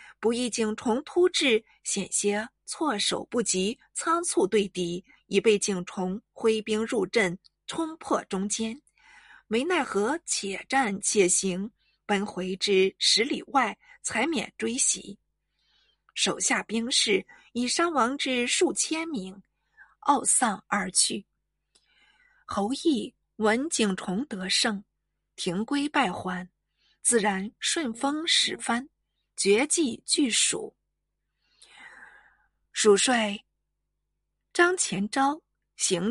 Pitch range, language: 200-270 Hz, Chinese